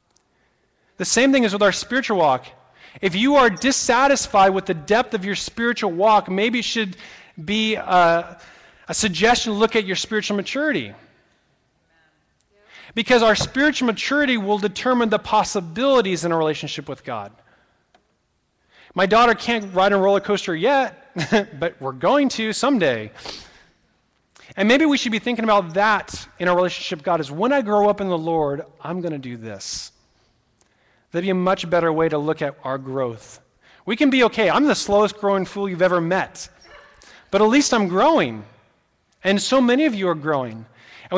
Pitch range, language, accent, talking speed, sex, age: 160-220 Hz, English, American, 175 wpm, male, 30-49